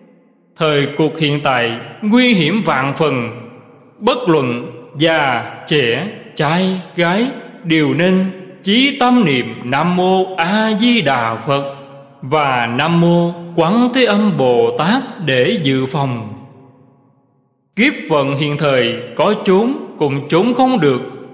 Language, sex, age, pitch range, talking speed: Vietnamese, male, 20-39, 135-210 Hz, 130 wpm